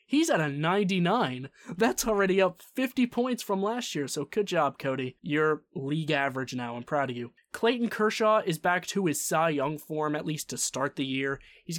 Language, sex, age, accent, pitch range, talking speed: English, male, 20-39, American, 140-200 Hz, 205 wpm